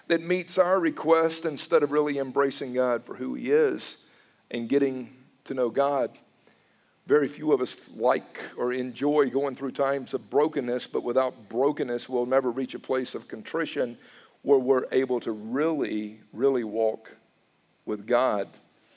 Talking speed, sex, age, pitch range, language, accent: 155 wpm, male, 50-69, 140-195 Hz, English, American